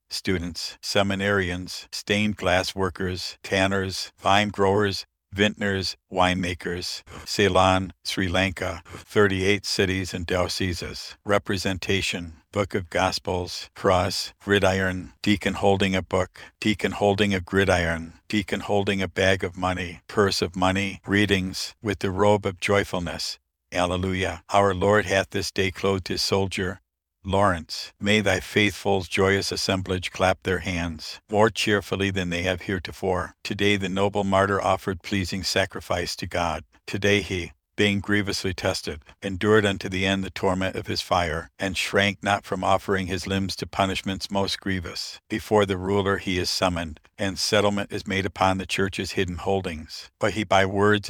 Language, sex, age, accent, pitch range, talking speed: English, male, 60-79, American, 90-100 Hz, 145 wpm